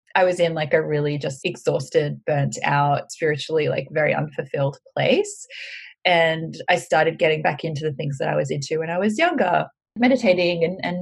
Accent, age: Australian, 20-39